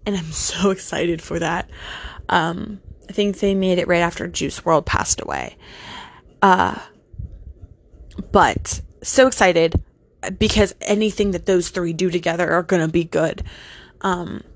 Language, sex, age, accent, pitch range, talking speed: English, female, 20-39, American, 175-210 Hz, 145 wpm